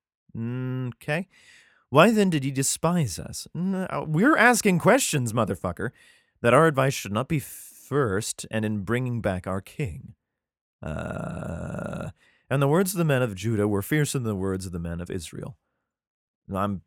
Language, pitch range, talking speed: English, 95-140 Hz, 155 wpm